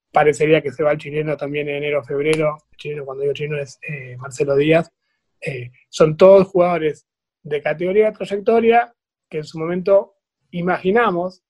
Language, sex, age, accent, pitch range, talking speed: Spanish, male, 20-39, Argentinian, 150-185 Hz, 170 wpm